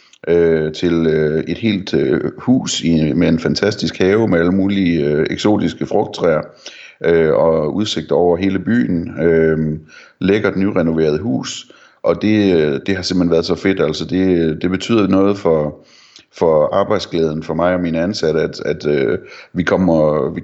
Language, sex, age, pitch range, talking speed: Danish, male, 30-49, 80-95 Hz, 165 wpm